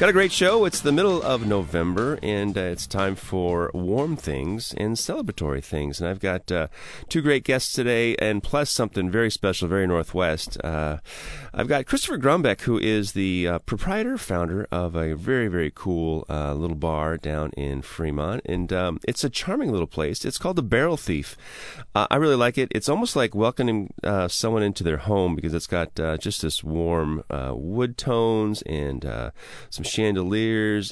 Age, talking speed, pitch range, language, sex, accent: 30-49, 185 wpm, 85-115 Hz, English, male, American